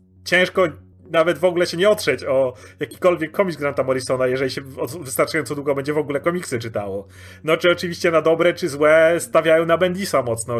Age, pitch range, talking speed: 30-49, 120-160 Hz, 180 wpm